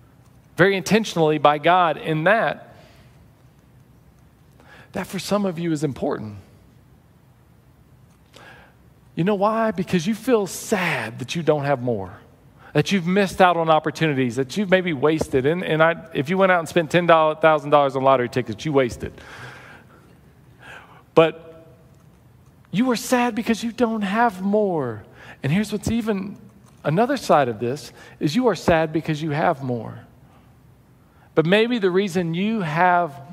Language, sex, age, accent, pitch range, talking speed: English, male, 40-59, American, 145-215 Hz, 145 wpm